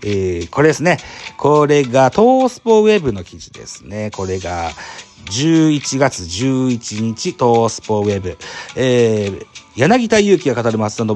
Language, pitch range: Japanese, 105-170 Hz